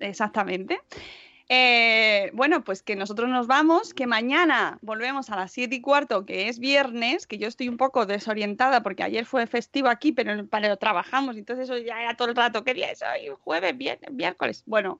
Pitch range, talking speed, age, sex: 220-270 Hz, 195 wpm, 20-39, female